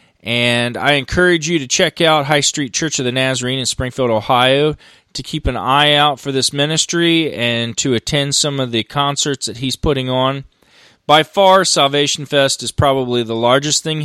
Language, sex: English, male